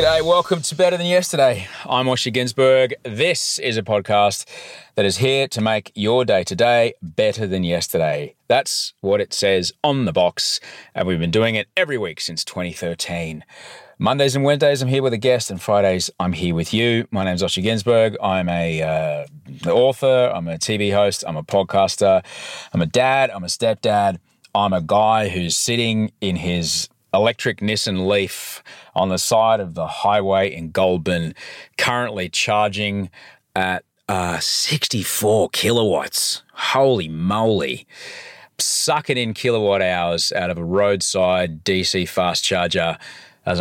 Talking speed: 155 wpm